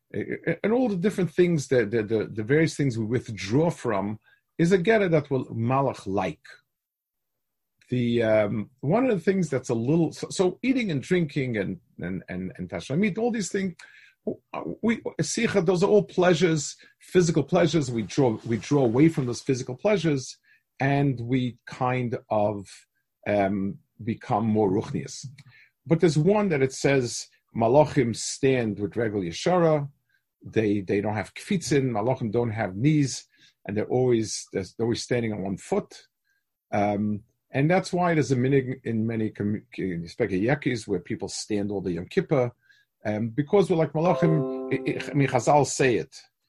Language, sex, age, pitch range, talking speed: English, male, 50-69, 105-165 Hz, 165 wpm